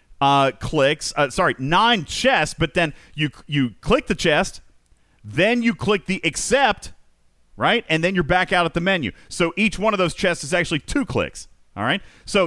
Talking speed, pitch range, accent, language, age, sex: 190 wpm, 110-170 Hz, American, English, 40-59, male